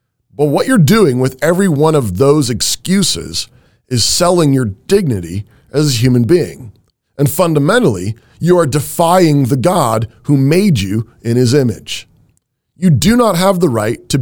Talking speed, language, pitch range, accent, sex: 165 wpm, English, 115-175 Hz, American, male